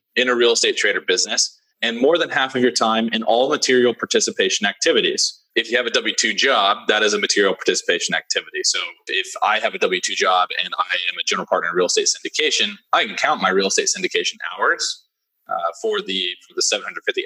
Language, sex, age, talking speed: English, male, 20-39, 215 wpm